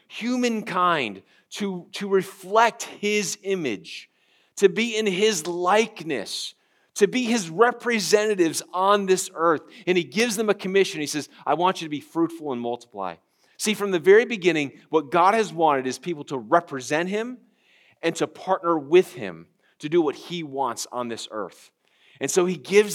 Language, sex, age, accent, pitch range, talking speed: English, male, 40-59, American, 160-200 Hz, 170 wpm